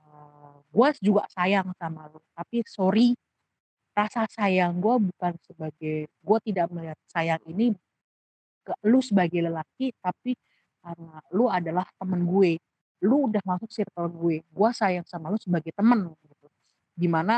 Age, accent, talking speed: 40-59, native, 140 wpm